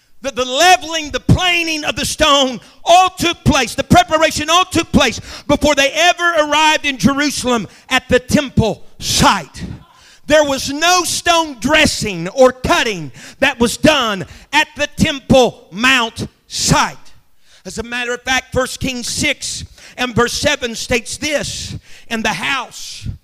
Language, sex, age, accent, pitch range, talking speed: English, male, 40-59, American, 245-310 Hz, 145 wpm